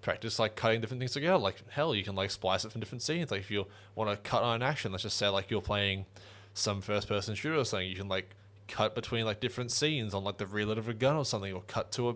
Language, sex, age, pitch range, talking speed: English, male, 20-39, 95-110 Hz, 280 wpm